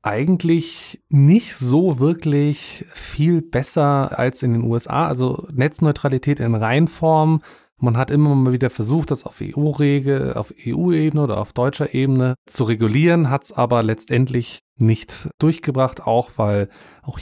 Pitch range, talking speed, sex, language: 110-145 Hz, 140 wpm, male, German